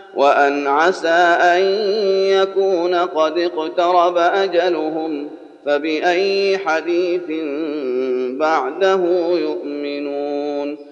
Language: Arabic